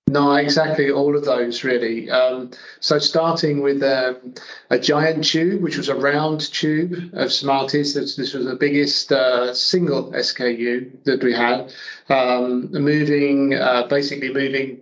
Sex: male